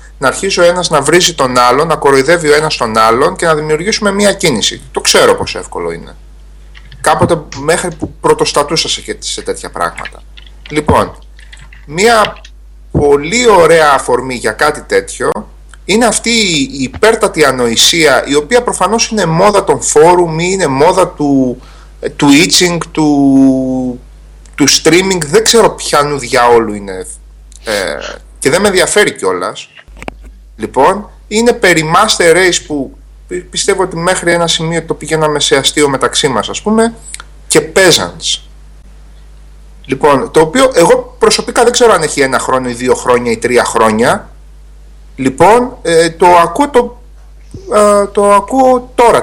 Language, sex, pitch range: Greek, male, 135-215 Hz